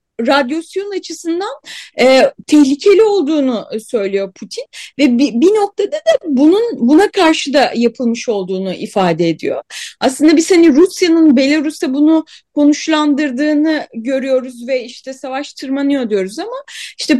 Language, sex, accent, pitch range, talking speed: Turkish, female, native, 255-335 Hz, 125 wpm